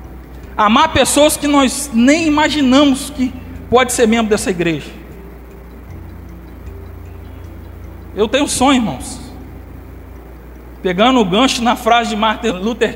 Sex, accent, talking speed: male, Brazilian, 115 wpm